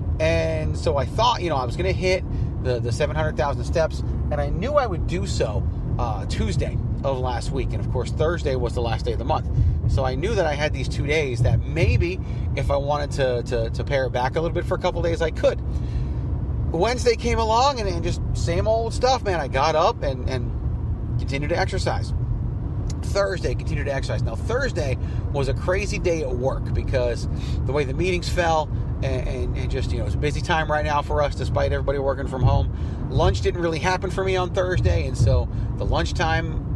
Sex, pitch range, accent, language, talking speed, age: male, 95-125 Hz, American, English, 215 wpm, 30-49